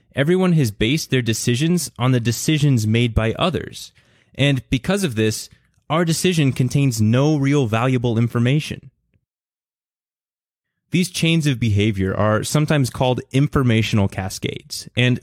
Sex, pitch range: male, 110-140 Hz